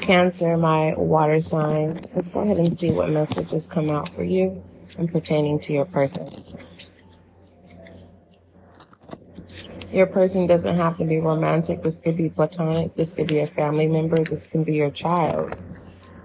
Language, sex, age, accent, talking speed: English, female, 30-49, American, 155 wpm